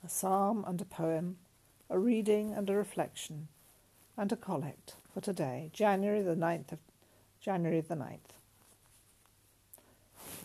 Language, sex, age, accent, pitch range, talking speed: English, female, 60-79, British, 120-190 Hz, 130 wpm